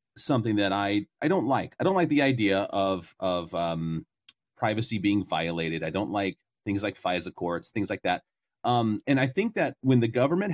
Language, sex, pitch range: English, male, 105-140 Hz